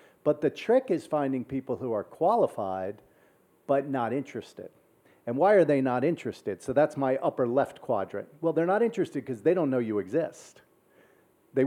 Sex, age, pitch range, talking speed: male, 50-69, 105-135 Hz, 180 wpm